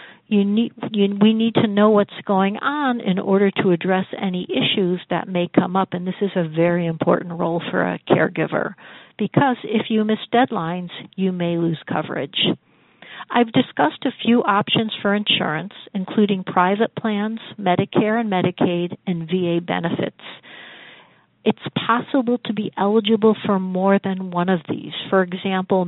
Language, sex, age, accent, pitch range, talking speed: English, female, 50-69, American, 180-220 Hz, 150 wpm